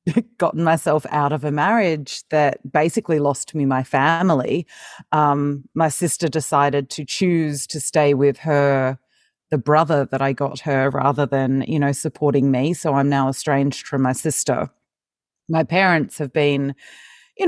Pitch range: 140-180 Hz